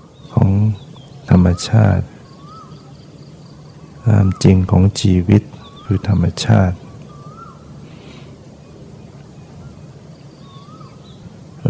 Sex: male